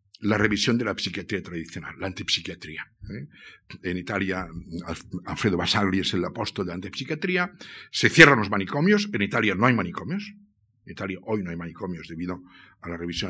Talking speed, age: 170 wpm, 60-79